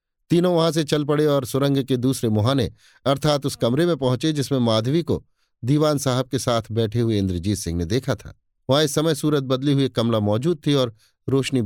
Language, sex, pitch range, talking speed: Hindi, male, 105-145 Hz, 200 wpm